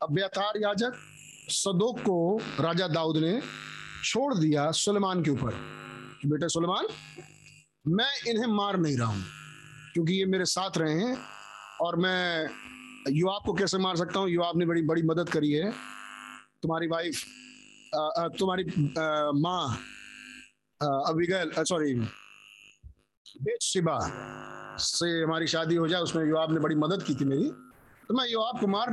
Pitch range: 135-185 Hz